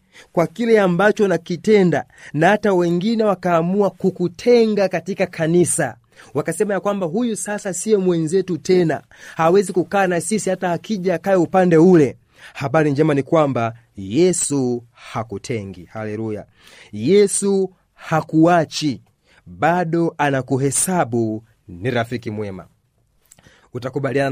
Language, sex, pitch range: Swahili, male, 125-185 Hz